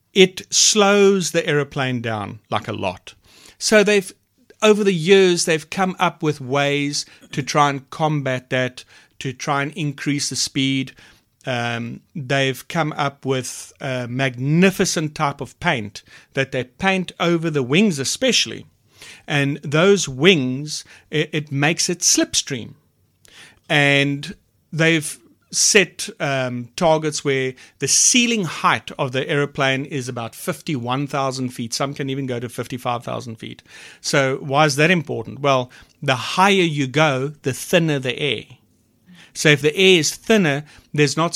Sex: male